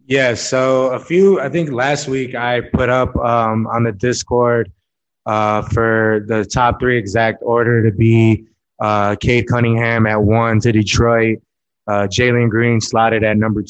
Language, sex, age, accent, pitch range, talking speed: English, male, 20-39, American, 105-120 Hz, 165 wpm